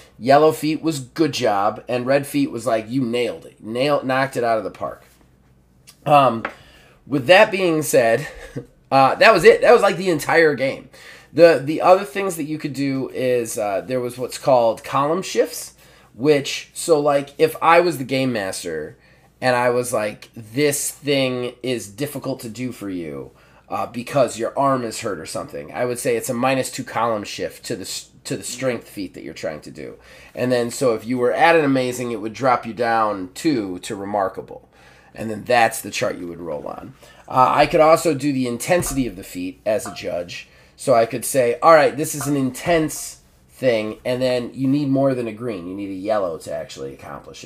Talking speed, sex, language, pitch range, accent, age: 210 wpm, male, English, 120-150 Hz, American, 20-39